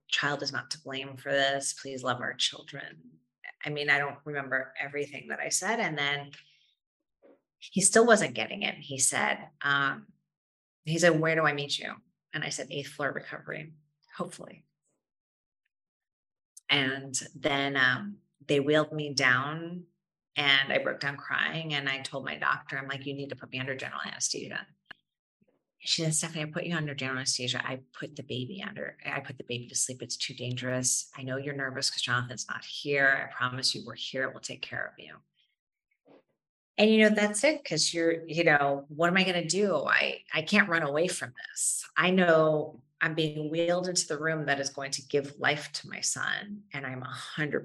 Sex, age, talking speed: female, 30-49, 195 wpm